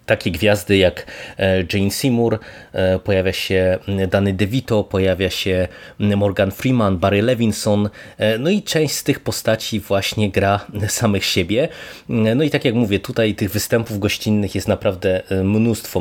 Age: 20-39